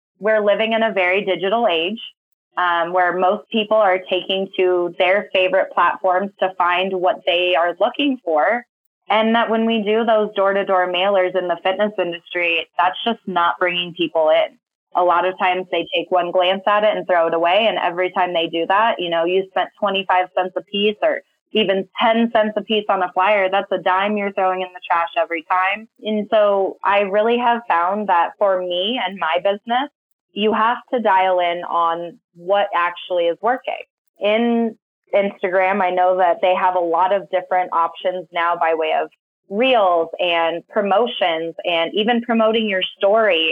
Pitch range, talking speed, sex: 180-215 Hz, 185 wpm, female